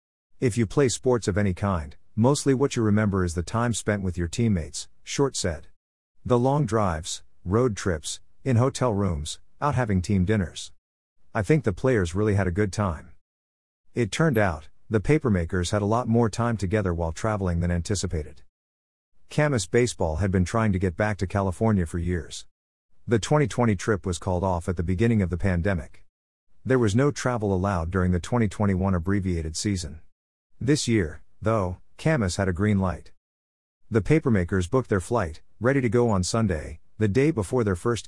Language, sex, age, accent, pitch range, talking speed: English, male, 50-69, American, 85-115 Hz, 180 wpm